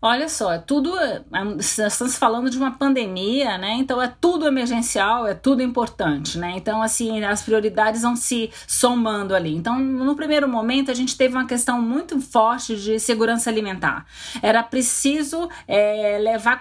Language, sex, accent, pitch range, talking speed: Portuguese, female, Brazilian, 220-265 Hz, 150 wpm